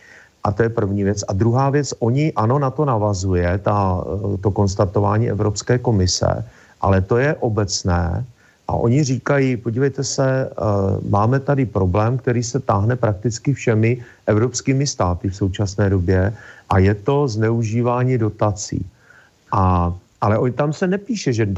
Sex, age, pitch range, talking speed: male, 40-59, 100-125 Hz, 135 wpm